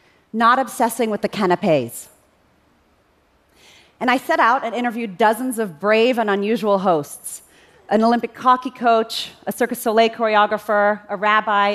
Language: Korean